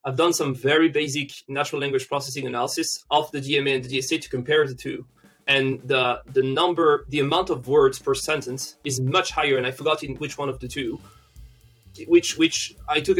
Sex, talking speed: male, 205 wpm